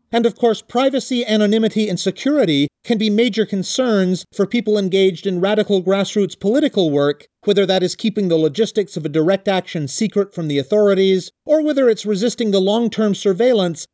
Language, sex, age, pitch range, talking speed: English, male, 40-59, 155-205 Hz, 170 wpm